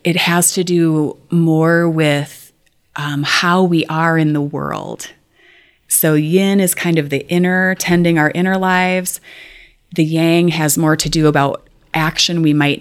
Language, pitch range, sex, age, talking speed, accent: English, 145-170 Hz, female, 30-49, 160 wpm, American